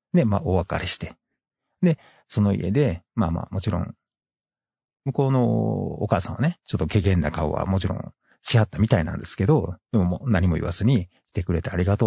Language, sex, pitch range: Japanese, male, 90-115 Hz